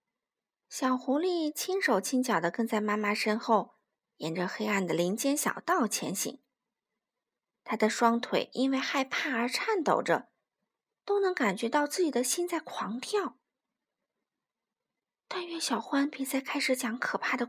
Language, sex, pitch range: Chinese, female, 225-310 Hz